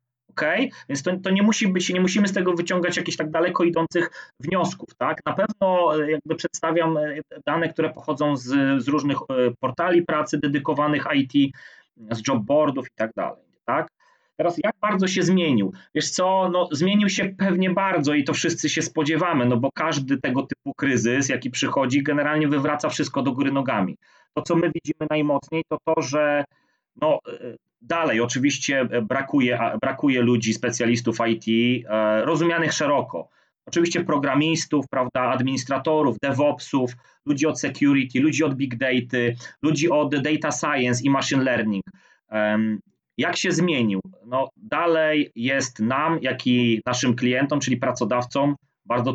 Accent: native